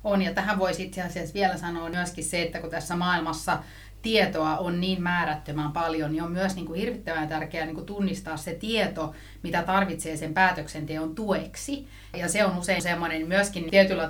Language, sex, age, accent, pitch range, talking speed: Finnish, female, 30-49, native, 160-185 Hz, 180 wpm